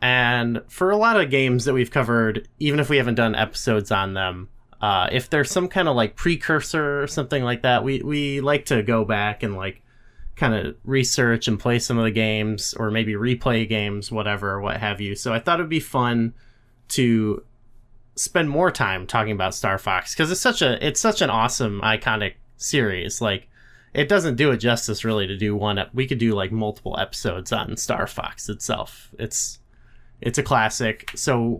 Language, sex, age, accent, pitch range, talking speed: English, male, 20-39, American, 105-130 Hz, 195 wpm